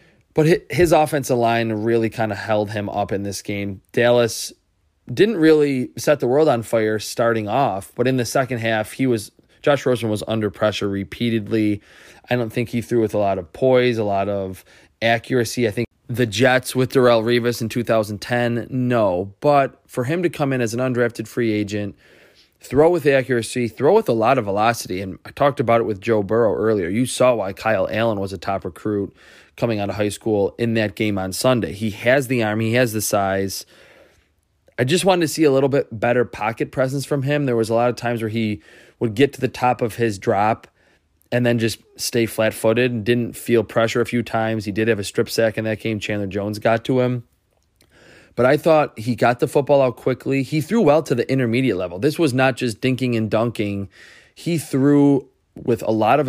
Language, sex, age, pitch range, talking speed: English, male, 20-39, 105-130 Hz, 215 wpm